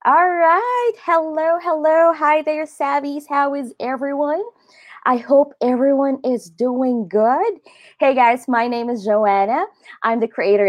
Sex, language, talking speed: female, English, 140 wpm